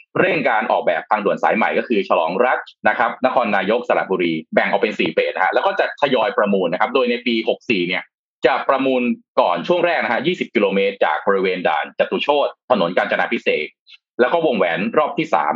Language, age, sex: Thai, 20-39, male